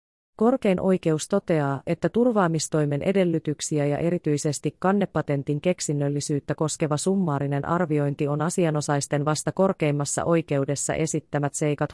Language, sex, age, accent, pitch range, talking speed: Finnish, female, 30-49, native, 145-185 Hz, 100 wpm